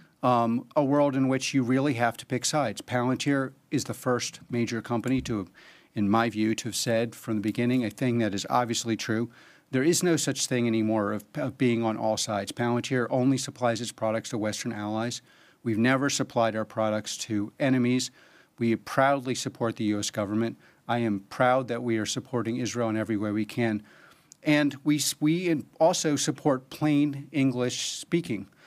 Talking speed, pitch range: 185 wpm, 115-140 Hz